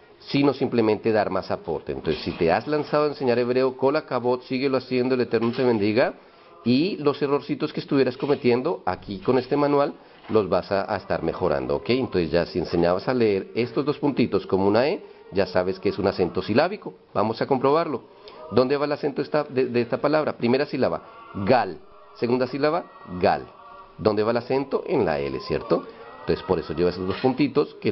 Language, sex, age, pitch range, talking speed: Spanish, male, 40-59, 105-140 Hz, 190 wpm